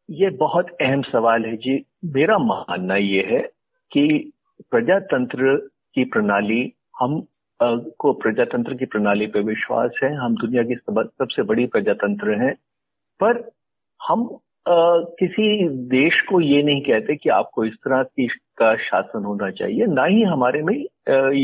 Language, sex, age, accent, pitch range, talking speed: Hindi, male, 50-69, native, 130-200 Hz, 150 wpm